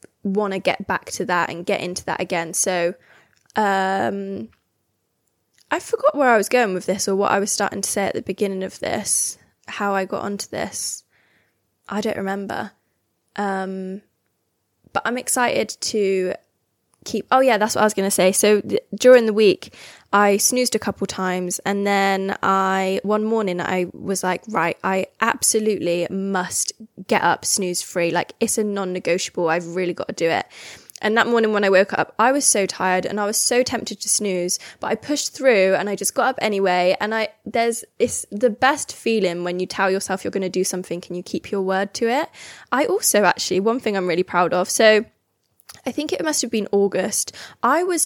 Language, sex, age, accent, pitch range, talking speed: English, female, 10-29, British, 185-220 Hz, 200 wpm